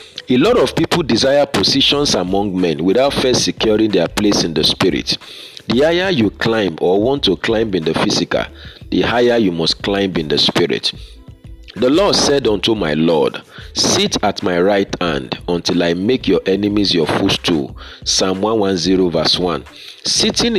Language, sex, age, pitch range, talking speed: English, male, 40-59, 90-120 Hz, 170 wpm